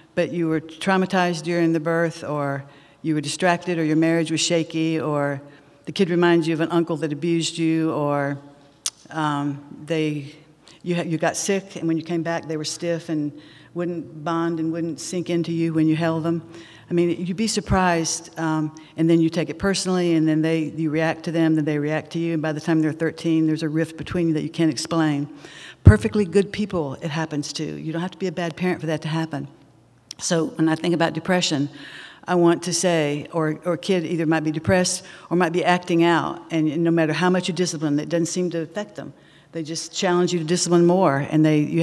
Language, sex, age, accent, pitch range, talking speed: English, female, 60-79, American, 155-175 Hz, 225 wpm